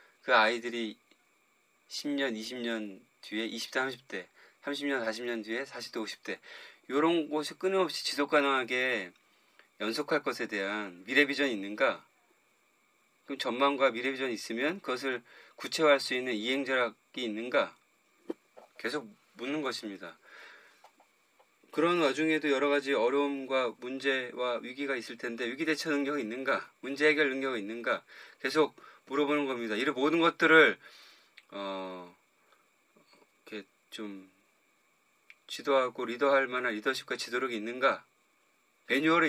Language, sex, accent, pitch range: Korean, male, native, 120-150 Hz